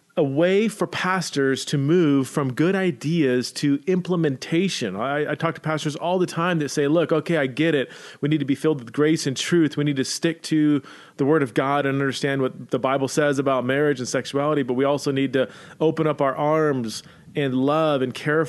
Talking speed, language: 215 wpm, English